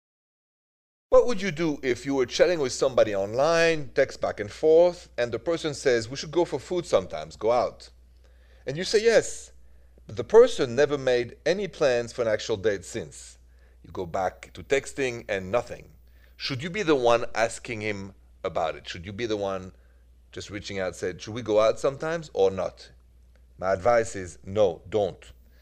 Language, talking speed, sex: English, 190 wpm, male